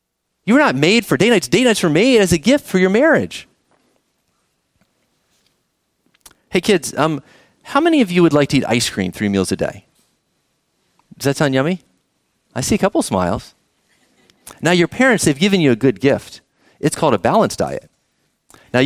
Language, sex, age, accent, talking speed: English, male, 30-49, American, 185 wpm